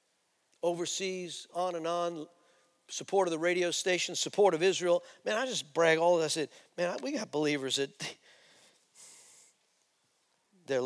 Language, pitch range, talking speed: English, 145-175 Hz, 140 wpm